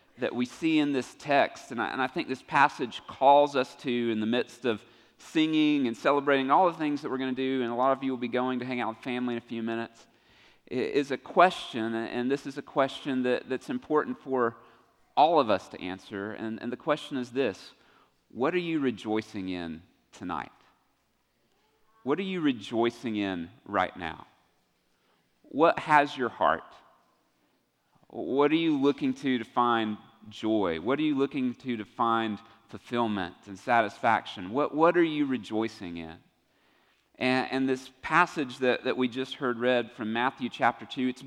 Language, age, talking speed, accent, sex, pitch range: English, 40-59, 180 wpm, American, male, 115-140 Hz